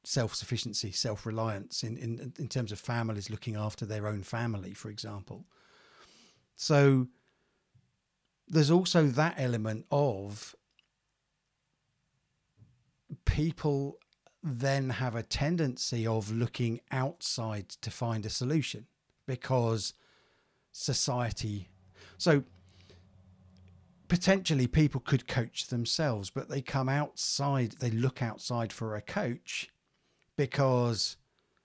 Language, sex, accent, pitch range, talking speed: English, male, British, 115-150 Hz, 100 wpm